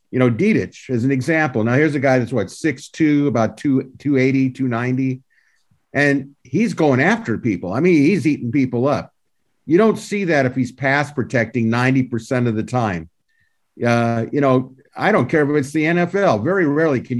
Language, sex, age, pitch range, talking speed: English, male, 50-69, 115-140 Hz, 180 wpm